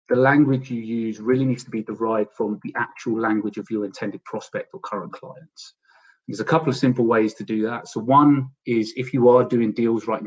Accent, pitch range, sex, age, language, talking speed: British, 105-125 Hz, male, 30-49, English, 220 wpm